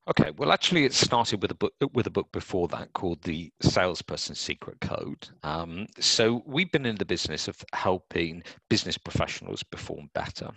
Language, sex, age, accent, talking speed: English, male, 50-69, British, 175 wpm